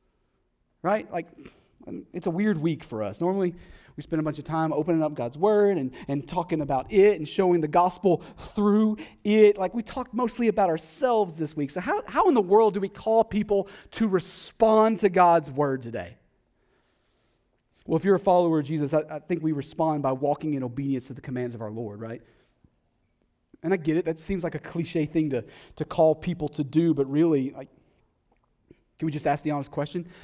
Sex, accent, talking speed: male, American, 205 wpm